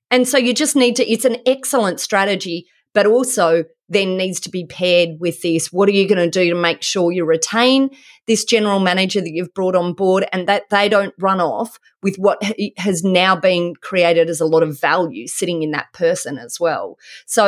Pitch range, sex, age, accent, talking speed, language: 180-230 Hz, female, 30-49, Australian, 215 wpm, English